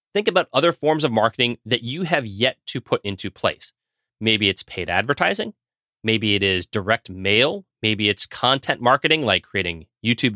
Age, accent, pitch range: 30-49, American, 105-135 Hz